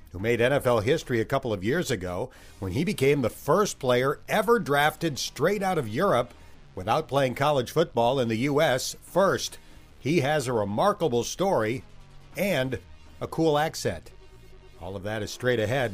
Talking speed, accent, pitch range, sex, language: 165 wpm, American, 110-155 Hz, male, English